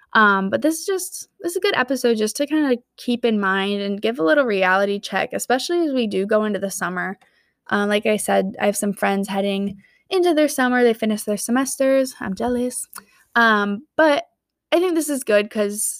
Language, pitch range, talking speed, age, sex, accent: English, 200-260 Hz, 215 wpm, 20-39, female, American